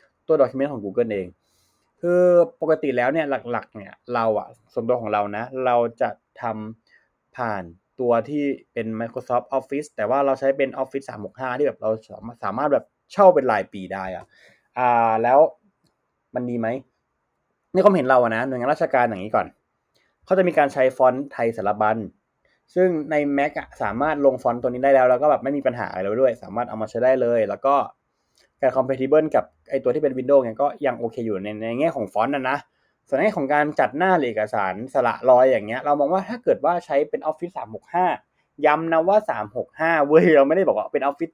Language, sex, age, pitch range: Thai, male, 20-39, 120-175 Hz